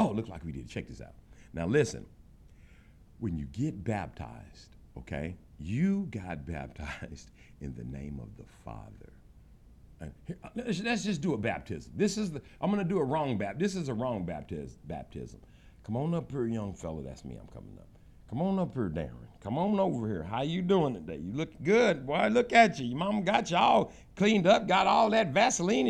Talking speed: 205 wpm